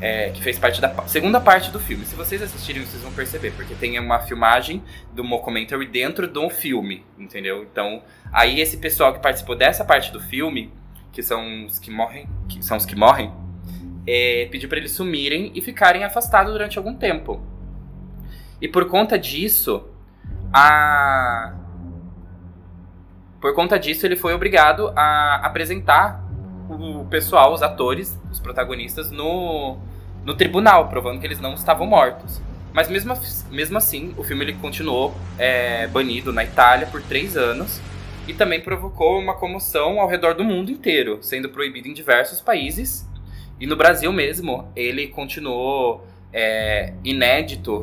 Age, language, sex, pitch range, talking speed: 20-39, Portuguese, male, 95-145 Hz, 150 wpm